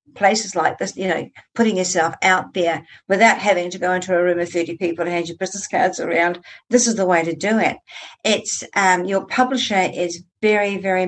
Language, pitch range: English, 170-200 Hz